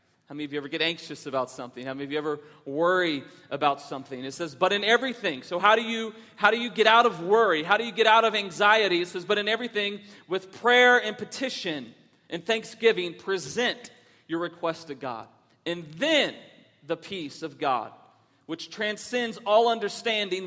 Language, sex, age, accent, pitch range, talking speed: English, male, 40-59, American, 175-220 Hz, 190 wpm